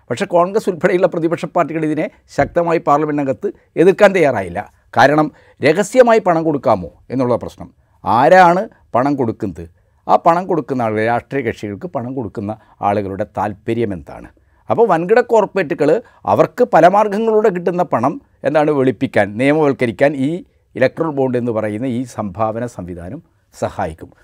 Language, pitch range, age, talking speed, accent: Malayalam, 110-170 Hz, 60-79, 120 wpm, native